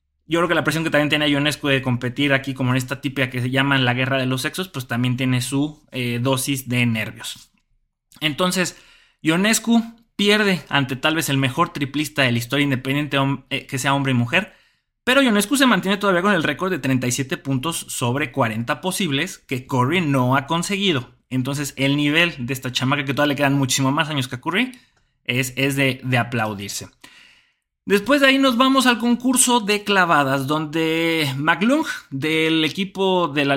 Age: 20-39